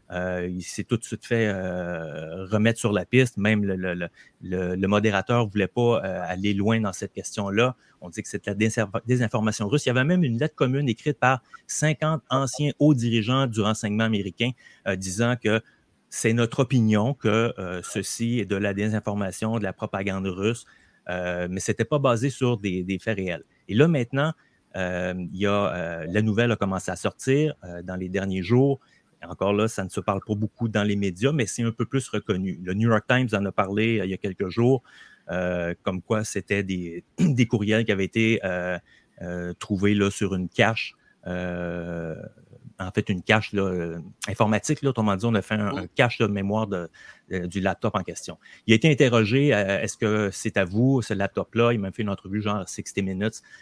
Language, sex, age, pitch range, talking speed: French, male, 30-49, 95-120 Hz, 210 wpm